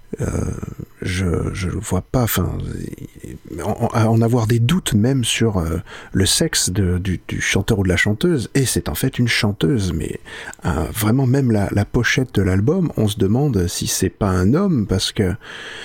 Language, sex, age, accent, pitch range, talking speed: French, male, 50-69, French, 95-125 Hz, 180 wpm